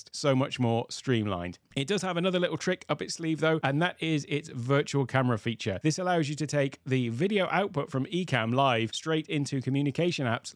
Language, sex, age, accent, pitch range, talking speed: English, male, 30-49, British, 115-155 Hz, 205 wpm